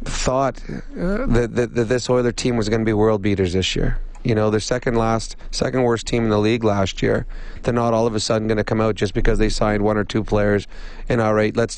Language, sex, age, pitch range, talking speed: English, male, 30-49, 110-125 Hz, 245 wpm